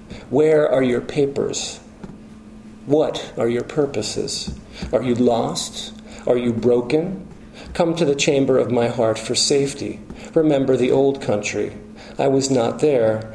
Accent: American